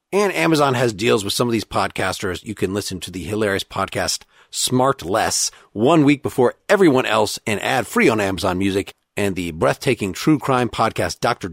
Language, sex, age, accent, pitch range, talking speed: English, male, 40-59, American, 100-130 Hz, 180 wpm